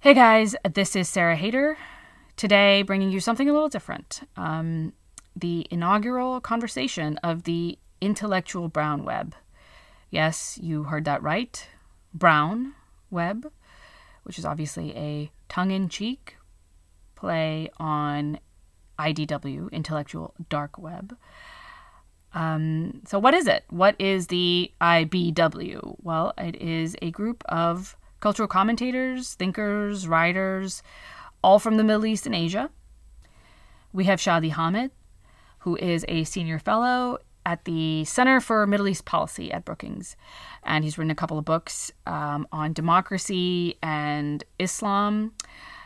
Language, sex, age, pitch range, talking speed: English, female, 20-39, 155-205 Hz, 125 wpm